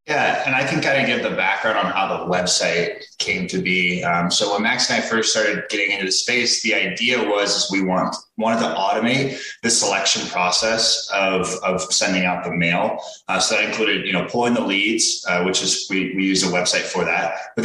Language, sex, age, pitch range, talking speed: English, male, 20-39, 90-115 Hz, 225 wpm